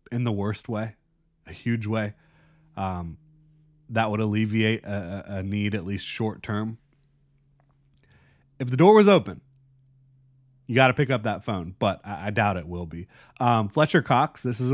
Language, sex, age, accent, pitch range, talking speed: English, male, 30-49, American, 105-125 Hz, 170 wpm